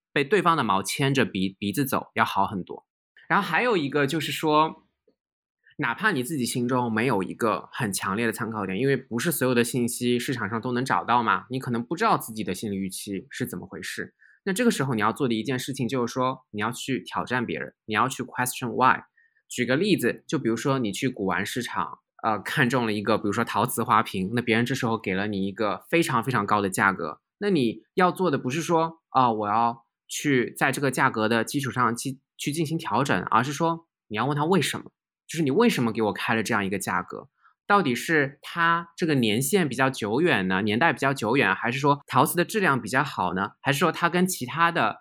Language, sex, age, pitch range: Chinese, male, 20-39, 110-150 Hz